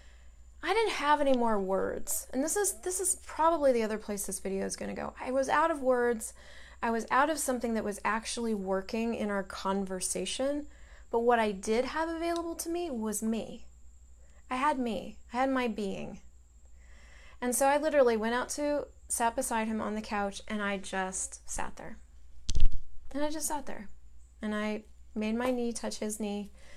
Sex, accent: female, American